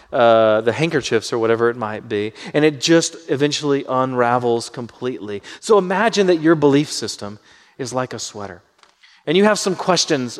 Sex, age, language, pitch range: male, 30-49, English, 130-180 Hz